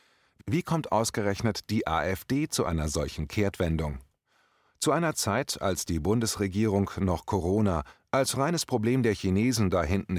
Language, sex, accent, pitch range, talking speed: German, male, German, 90-125 Hz, 140 wpm